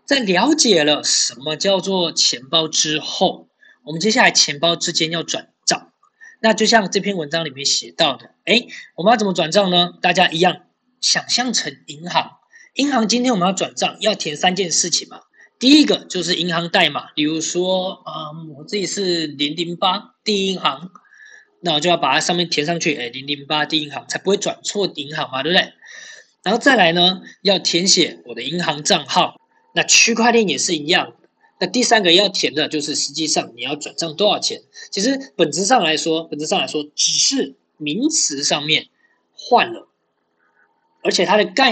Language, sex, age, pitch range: Chinese, male, 20-39, 155-220 Hz